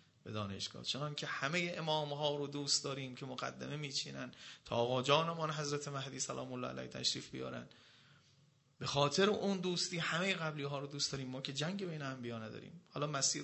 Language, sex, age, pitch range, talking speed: Persian, male, 30-49, 130-155 Hz, 180 wpm